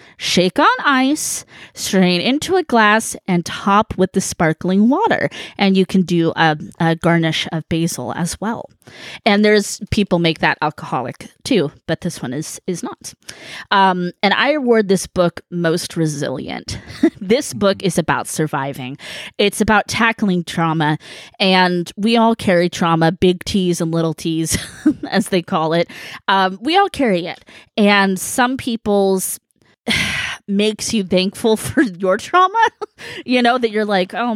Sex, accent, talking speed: female, American, 155 wpm